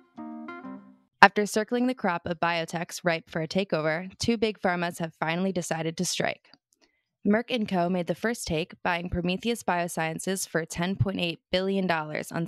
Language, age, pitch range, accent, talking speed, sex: English, 20-39, 160-195 Hz, American, 155 wpm, female